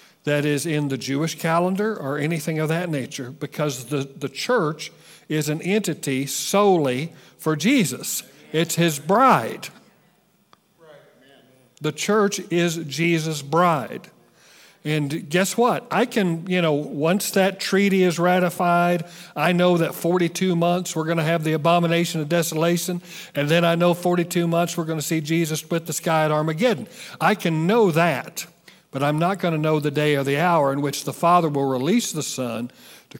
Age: 50-69